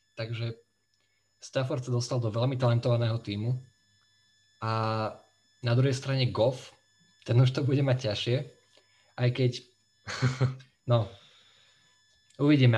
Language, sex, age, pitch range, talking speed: Slovak, male, 20-39, 105-125 Hz, 110 wpm